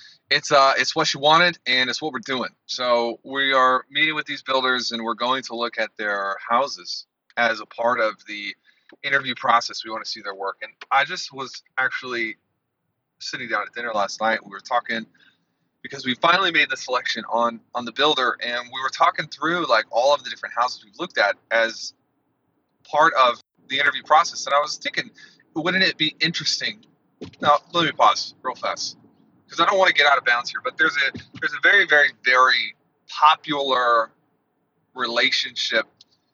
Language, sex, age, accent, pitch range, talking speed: English, male, 30-49, American, 115-150 Hz, 195 wpm